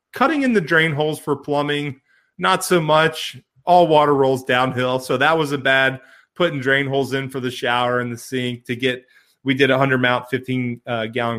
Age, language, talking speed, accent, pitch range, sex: 30-49, English, 190 wpm, American, 125-150 Hz, male